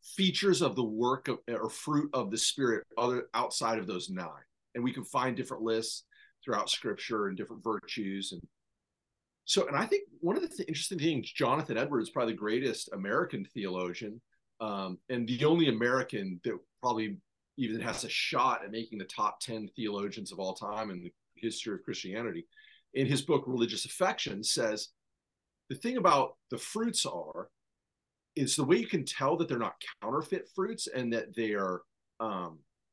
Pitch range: 110-165 Hz